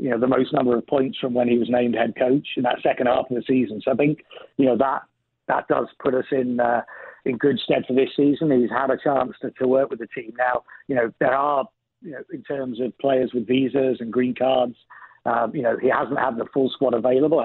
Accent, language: British, English